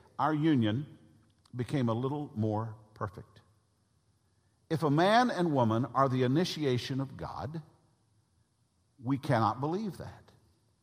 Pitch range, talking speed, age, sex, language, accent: 110-155 Hz, 115 wpm, 50-69, male, English, American